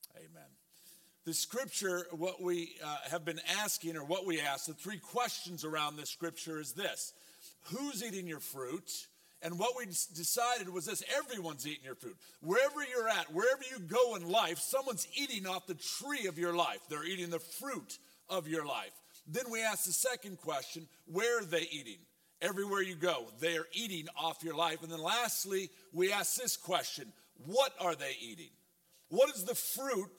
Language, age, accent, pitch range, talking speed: English, 50-69, American, 170-195 Hz, 180 wpm